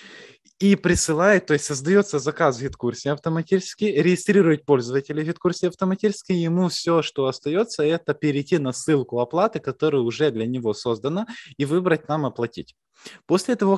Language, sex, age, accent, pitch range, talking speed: Russian, male, 20-39, native, 125-165 Hz, 150 wpm